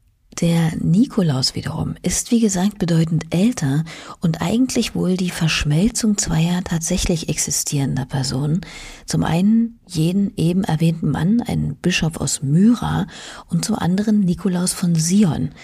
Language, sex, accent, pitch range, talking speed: German, female, German, 145-190 Hz, 125 wpm